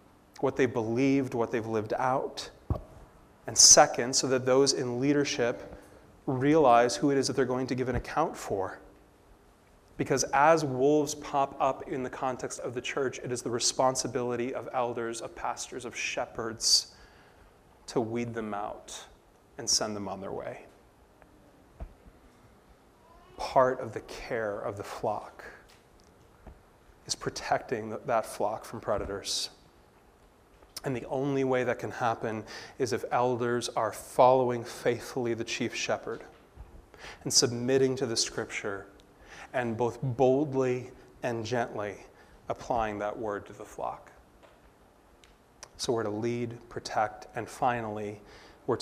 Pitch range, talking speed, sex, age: 115-140 Hz, 135 wpm, male, 30-49